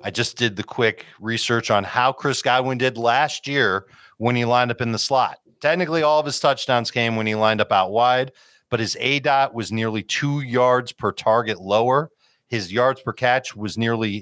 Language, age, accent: English, 40-59, American